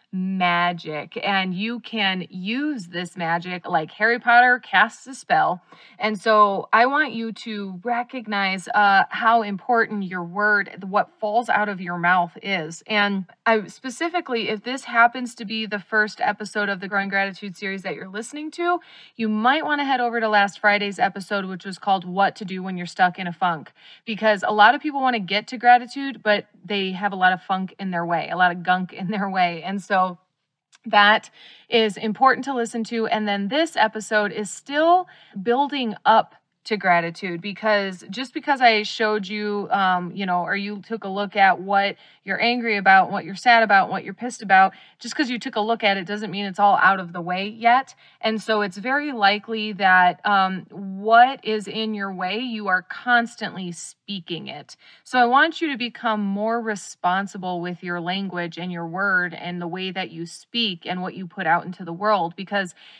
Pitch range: 185-230 Hz